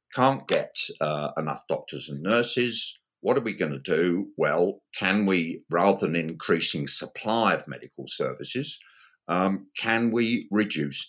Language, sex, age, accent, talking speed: English, male, 50-69, British, 145 wpm